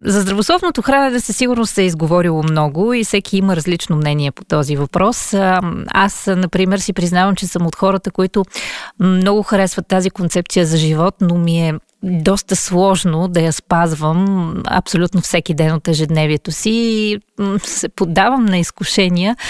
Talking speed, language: 160 wpm, Bulgarian